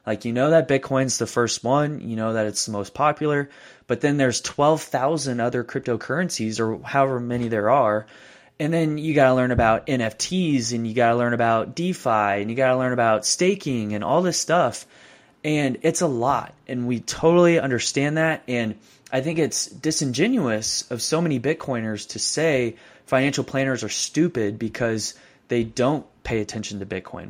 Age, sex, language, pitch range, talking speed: 20-39, male, English, 115-145 Hz, 180 wpm